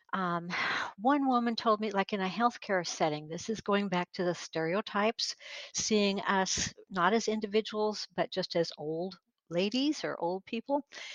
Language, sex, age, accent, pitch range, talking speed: English, female, 60-79, American, 170-215 Hz, 160 wpm